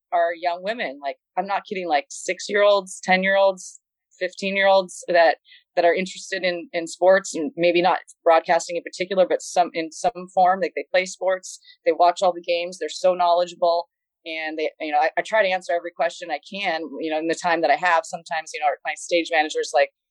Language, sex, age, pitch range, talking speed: English, female, 30-49, 160-200 Hz, 205 wpm